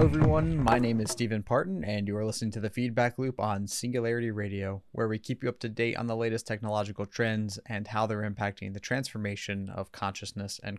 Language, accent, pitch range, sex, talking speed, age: English, American, 105-120 Hz, male, 215 wpm, 20-39